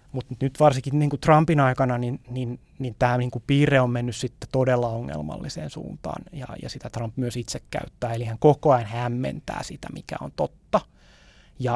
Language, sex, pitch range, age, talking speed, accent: Finnish, male, 120-135 Hz, 20-39, 190 wpm, native